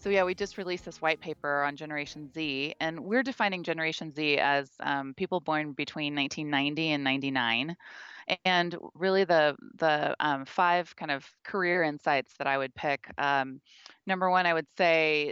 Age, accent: 20-39, American